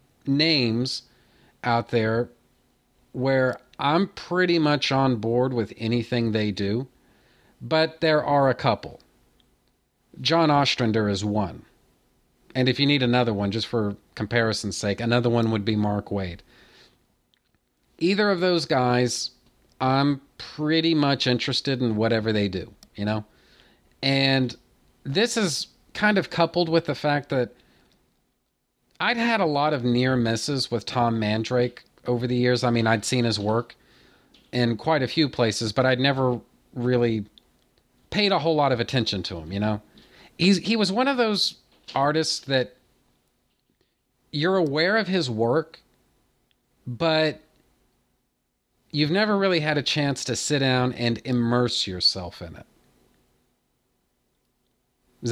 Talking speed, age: 140 wpm, 40-59